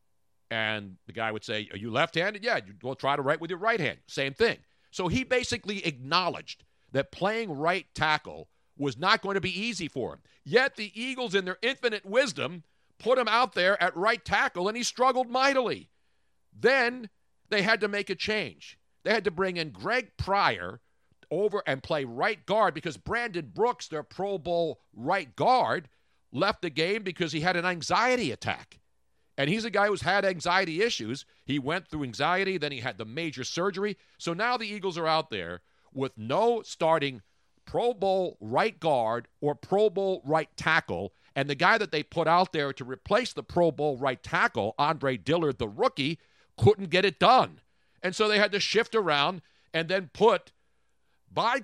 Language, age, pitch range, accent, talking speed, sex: English, 50-69, 140-210 Hz, American, 190 wpm, male